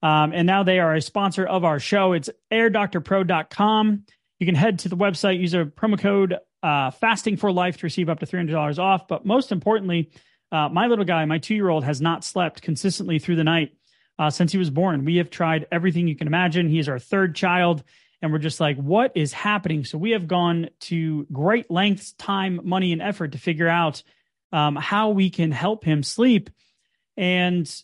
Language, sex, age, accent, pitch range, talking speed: English, male, 30-49, American, 160-205 Hz, 200 wpm